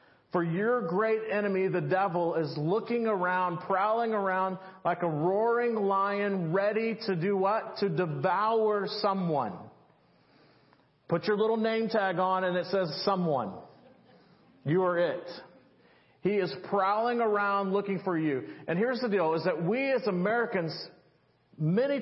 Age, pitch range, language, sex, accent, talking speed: 40-59, 175-210 Hz, English, male, American, 140 wpm